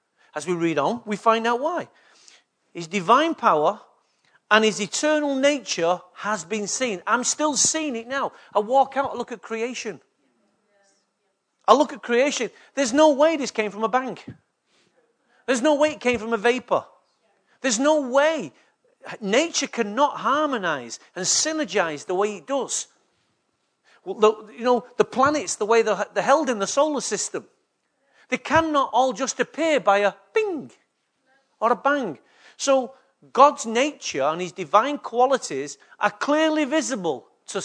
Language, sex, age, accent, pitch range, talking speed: English, male, 40-59, British, 205-280 Hz, 155 wpm